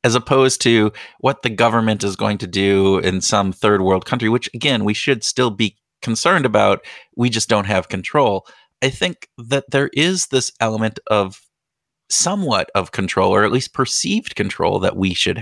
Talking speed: 185 wpm